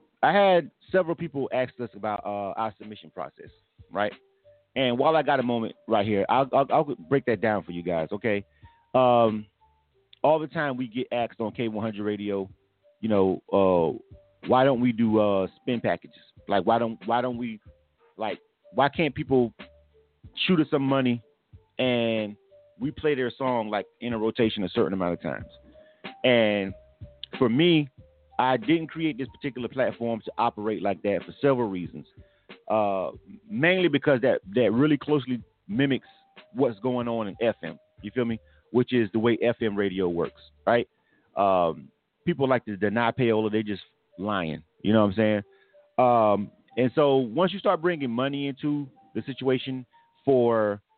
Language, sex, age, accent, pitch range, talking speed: English, male, 30-49, American, 105-140 Hz, 170 wpm